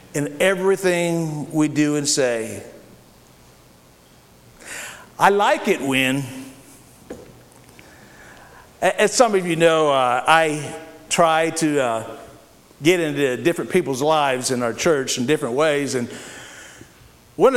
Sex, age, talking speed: male, 50-69, 115 wpm